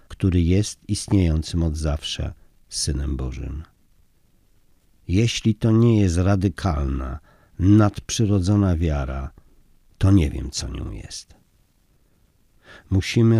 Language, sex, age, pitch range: Polish, male, 50-69, 80-105 Hz